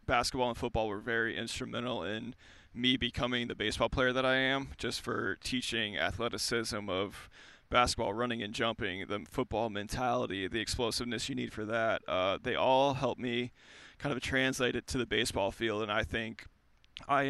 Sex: male